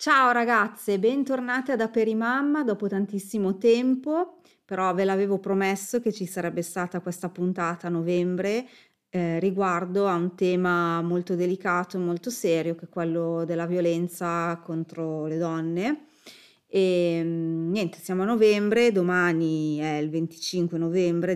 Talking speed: 135 wpm